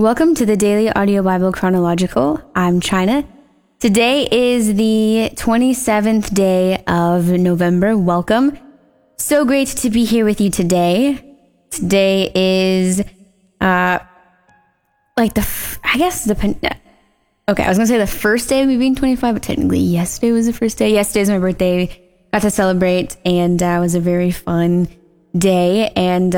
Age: 10-29